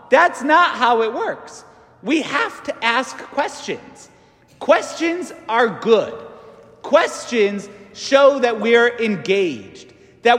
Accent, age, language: American, 40-59, English